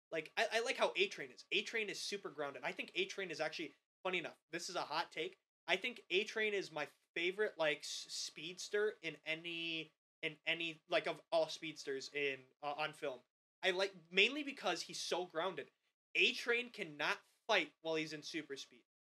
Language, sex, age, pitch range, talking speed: English, male, 20-39, 145-190 Hz, 185 wpm